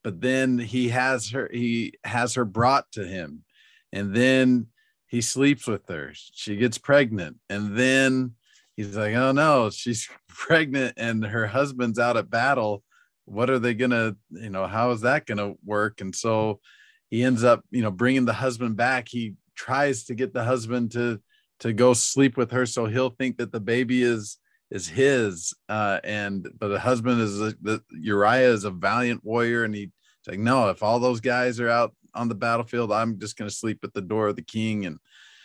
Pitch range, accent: 100-125 Hz, American